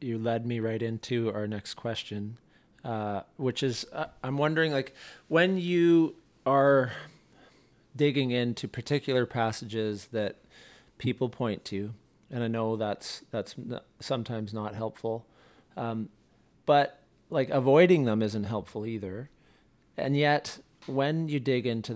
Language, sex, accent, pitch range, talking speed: English, male, American, 110-130 Hz, 135 wpm